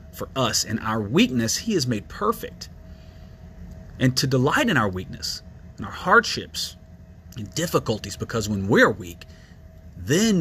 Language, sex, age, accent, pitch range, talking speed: English, male, 30-49, American, 90-150 Hz, 145 wpm